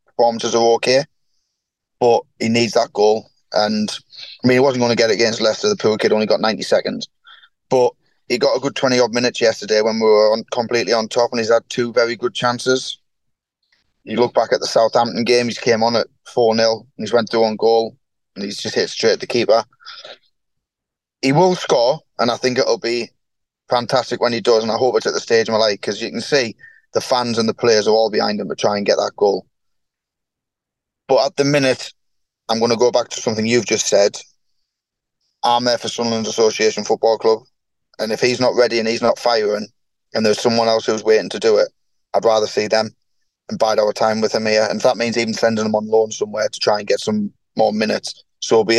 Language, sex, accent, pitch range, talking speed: English, male, British, 110-130 Hz, 225 wpm